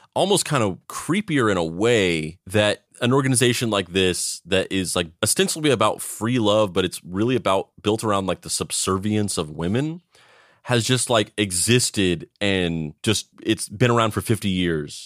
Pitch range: 90-115 Hz